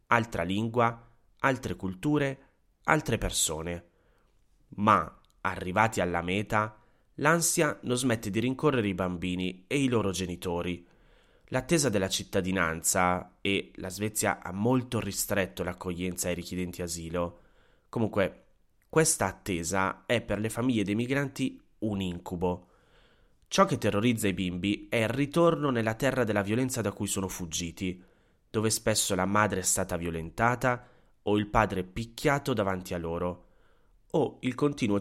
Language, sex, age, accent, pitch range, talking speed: Italian, male, 30-49, native, 90-120 Hz, 135 wpm